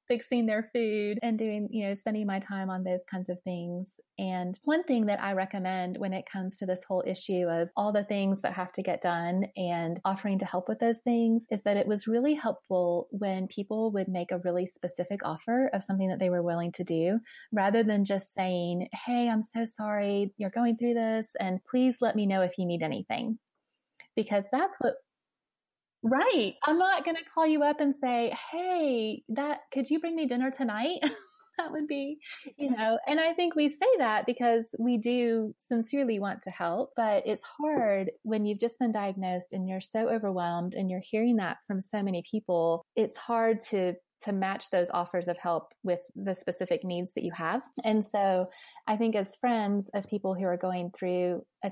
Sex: female